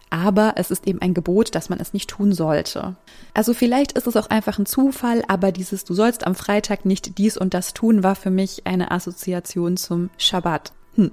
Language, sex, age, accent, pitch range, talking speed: German, female, 20-39, German, 180-215 Hz, 205 wpm